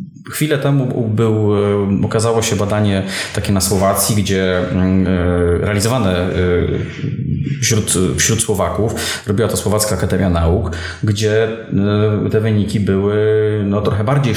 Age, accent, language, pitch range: 20-39, native, Polish, 95-130 Hz